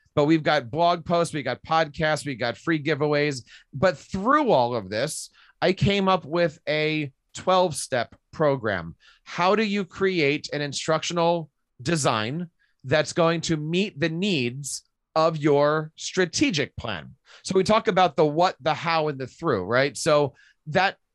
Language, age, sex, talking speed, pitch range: English, 30-49, male, 155 wpm, 140-175 Hz